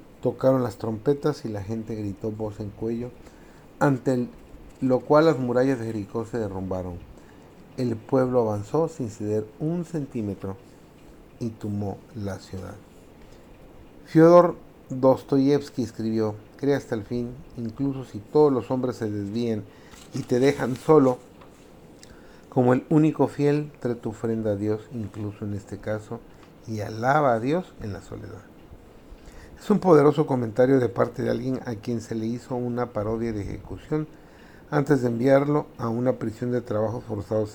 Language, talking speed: Spanish, 150 wpm